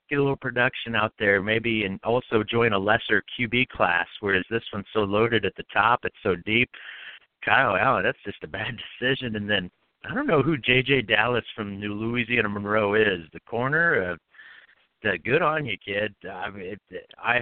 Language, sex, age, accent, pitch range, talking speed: English, male, 50-69, American, 110-130 Hz, 190 wpm